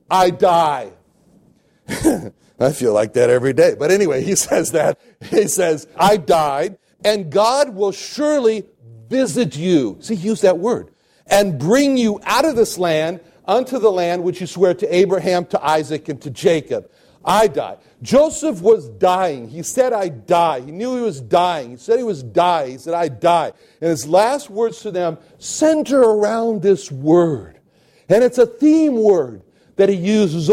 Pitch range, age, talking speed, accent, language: 165-225 Hz, 60-79, 175 wpm, American, English